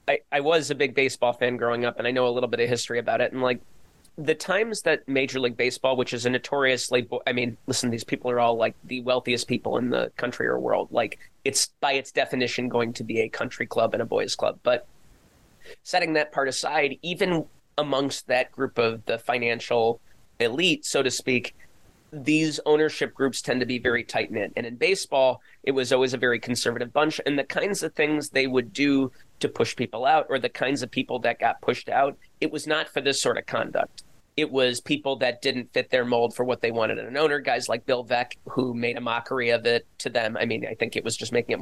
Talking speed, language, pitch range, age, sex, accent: 230 wpm, English, 120-145 Hz, 30-49, male, American